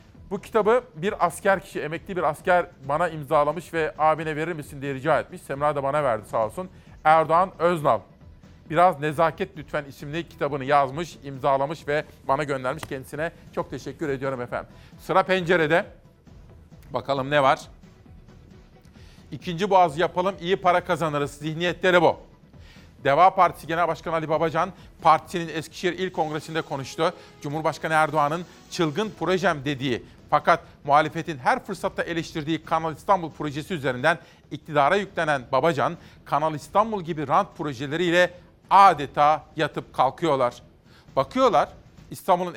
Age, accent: 40-59, native